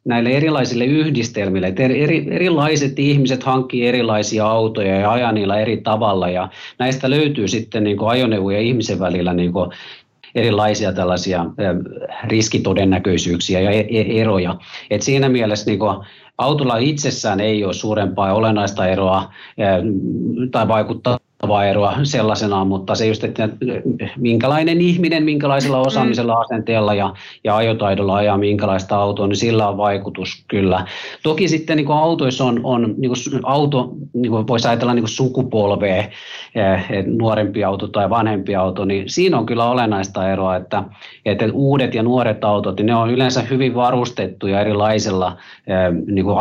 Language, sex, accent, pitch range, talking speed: Finnish, male, native, 100-125 Hz, 125 wpm